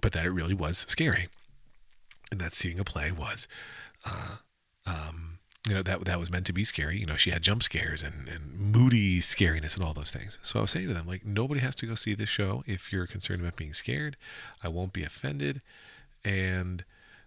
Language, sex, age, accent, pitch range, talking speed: English, male, 40-59, American, 85-105 Hz, 215 wpm